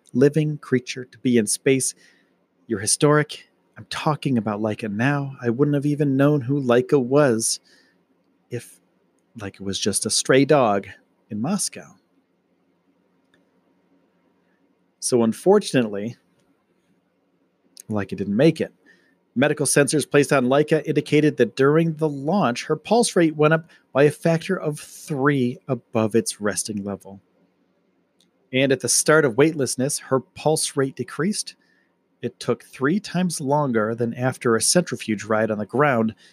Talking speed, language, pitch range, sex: 135 wpm, English, 110-150 Hz, male